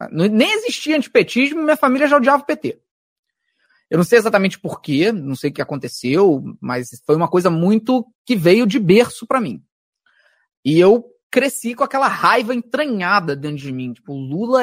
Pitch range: 155-245 Hz